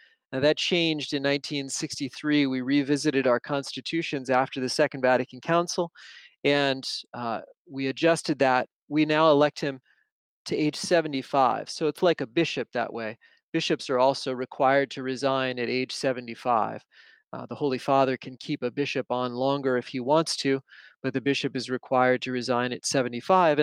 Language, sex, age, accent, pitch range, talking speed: English, male, 30-49, American, 130-155 Hz, 165 wpm